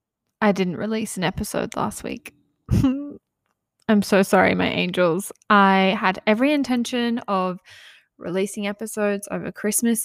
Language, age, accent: English, 10-29, Australian